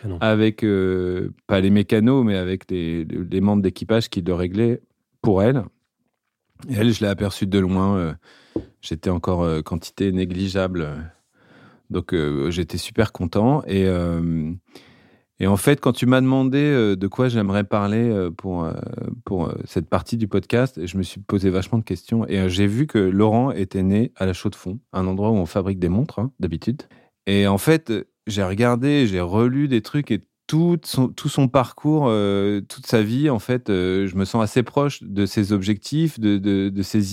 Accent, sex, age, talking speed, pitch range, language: French, male, 30-49, 190 wpm, 95-115 Hz, French